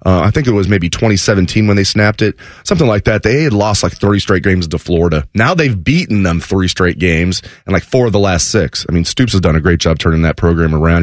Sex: male